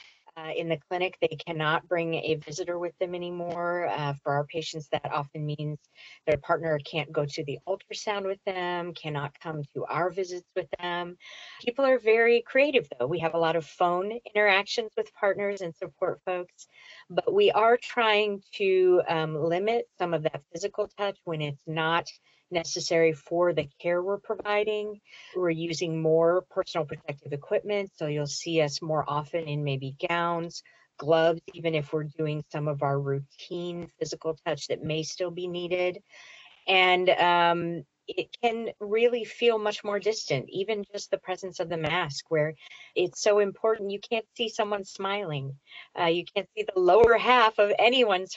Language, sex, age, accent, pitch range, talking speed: English, female, 40-59, American, 155-205 Hz, 170 wpm